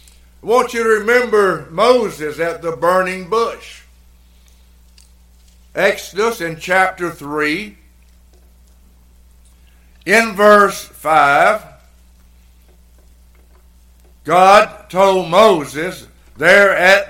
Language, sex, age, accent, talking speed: English, male, 60-79, American, 75 wpm